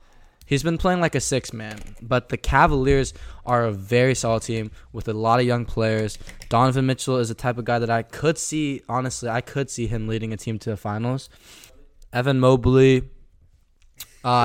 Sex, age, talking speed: male, 10-29, 190 wpm